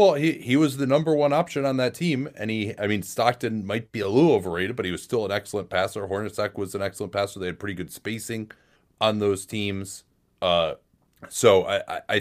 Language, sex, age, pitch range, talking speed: English, male, 30-49, 95-115 Hz, 215 wpm